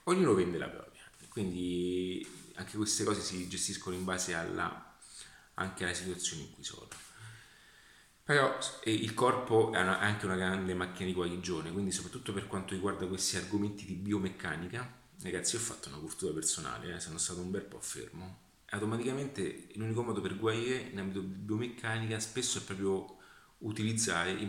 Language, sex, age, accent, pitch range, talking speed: Italian, male, 30-49, native, 90-105 Hz, 165 wpm